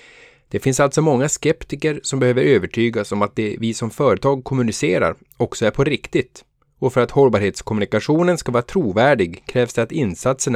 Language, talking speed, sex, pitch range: Swedish, 170 wpm, male, 115-150 Hz